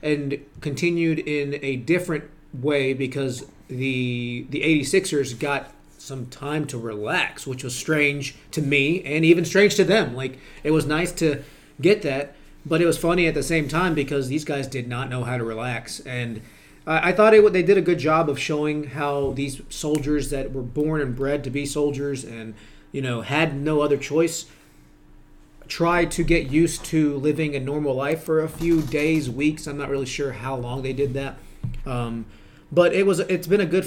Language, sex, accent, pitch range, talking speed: English, male, American, 135-155 Hz, 200 wpm